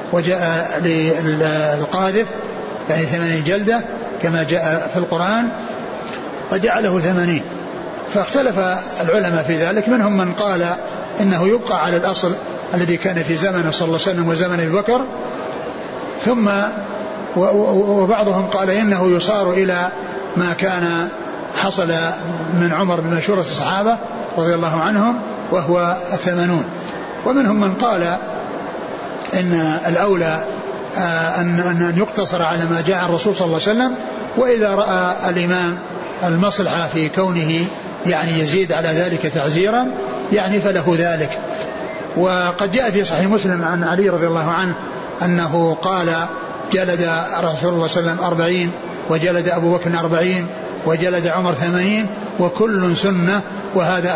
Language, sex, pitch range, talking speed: Arabic, male, 165-195 Hz, 120 wpm